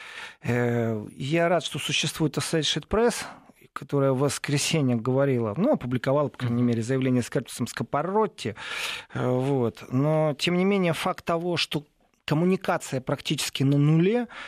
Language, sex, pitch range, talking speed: Russian, male, 130-165 Hz, 130 wpm